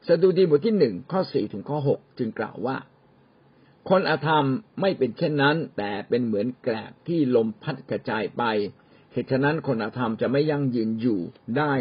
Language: Thai